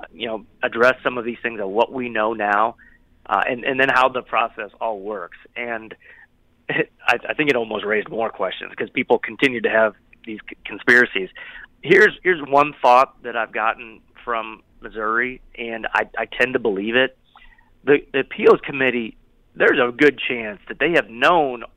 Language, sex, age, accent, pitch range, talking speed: English, male, 30-49, American, 110-135 Hz, 180 wpm